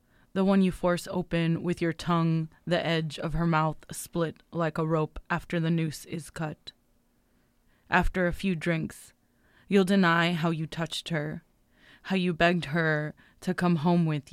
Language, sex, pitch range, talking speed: English, female, 160-175 Hz, 170 wpm